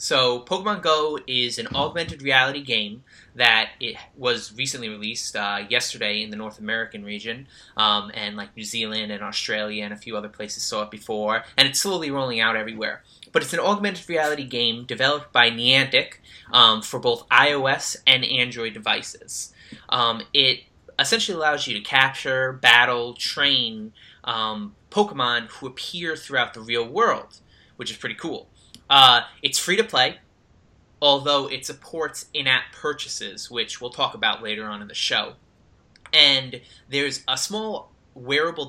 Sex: male